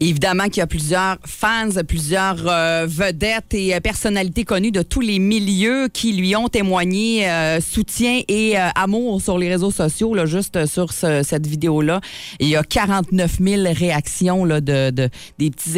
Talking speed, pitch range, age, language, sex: 185 wpm, 150-190 Hz, 30-49, French, female